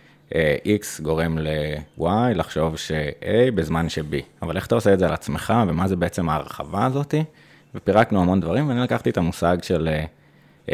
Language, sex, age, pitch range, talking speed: Hebrew, male, 20-39, 80-95 Hz, 160 wpm